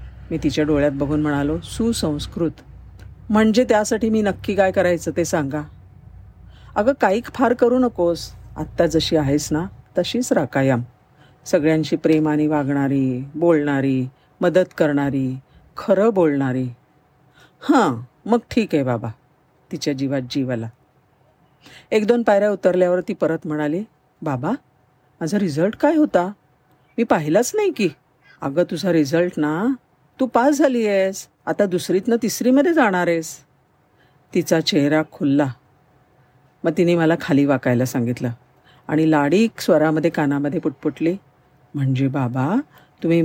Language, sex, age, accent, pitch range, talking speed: Marathi, female, 50-69, native, 140-190 Hz, 120 wpm